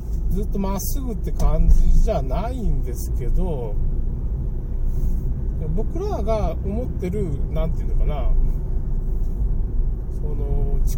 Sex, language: male, Japanese